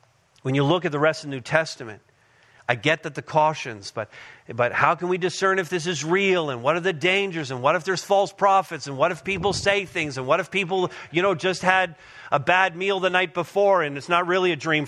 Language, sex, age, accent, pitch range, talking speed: English, male, 40-59, American, 160-215 Hz, 250 wpm